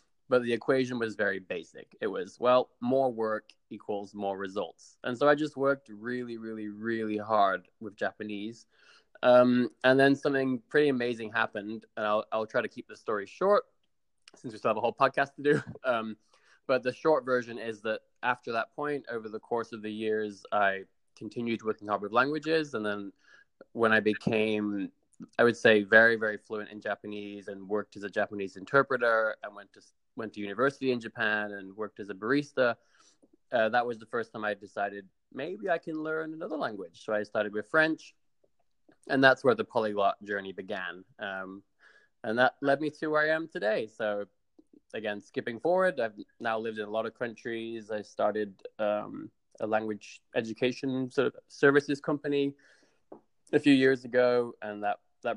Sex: male